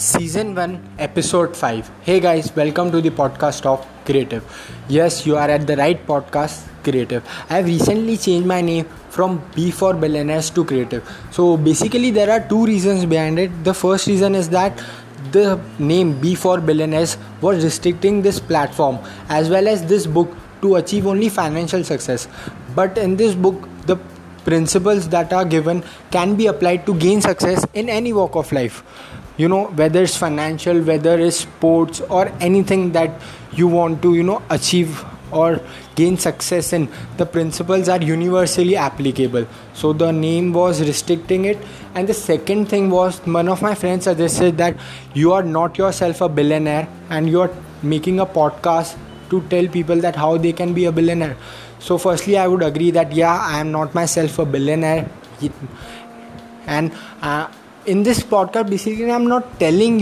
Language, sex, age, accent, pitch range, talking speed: Hindi, male, 20-39, native, 155-190 Hz, 170 wpm